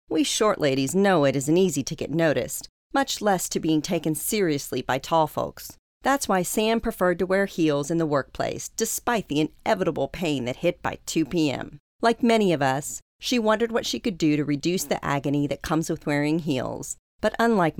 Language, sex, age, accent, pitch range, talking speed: English, female, 40-59, American, 145-195 Hz, 200 wpm